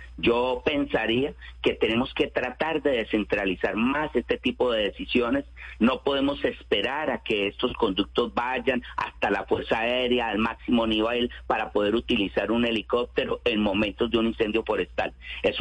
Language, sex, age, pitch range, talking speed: Spanish, male, 40-59, 115-155 Hz, 155 wpm